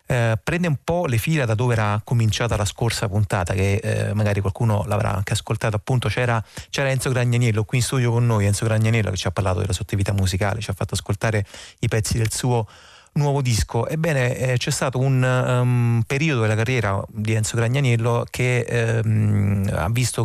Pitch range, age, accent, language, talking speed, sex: 105-125 Hz, 30-49, native, Italian, 195 wpm, male